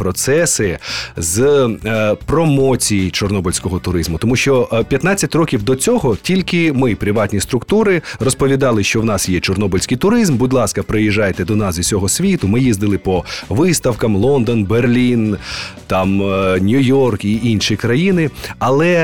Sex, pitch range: male, 100-135 Hz